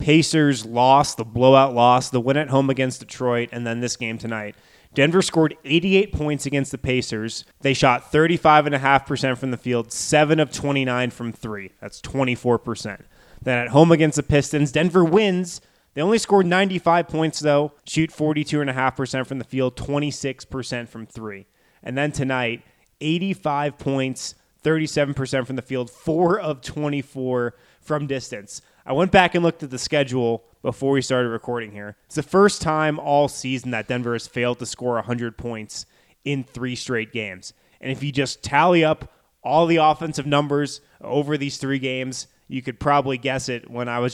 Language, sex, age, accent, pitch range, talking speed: English, male, 20-39, American, 120-150 Hz, 170 wpm